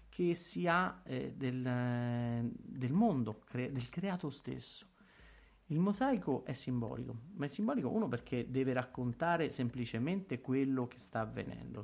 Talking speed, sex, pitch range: 140 wpm, male, 120-165 Hz